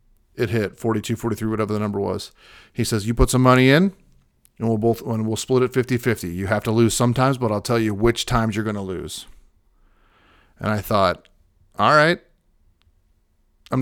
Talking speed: 195 wpm